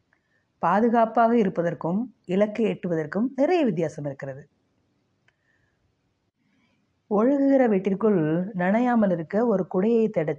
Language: Tamil